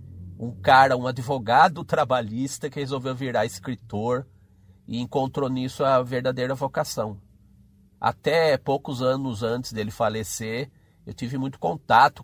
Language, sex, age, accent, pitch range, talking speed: Portuguese, male, 50-69, Brazilian, 110-155 Hz, 125 wpm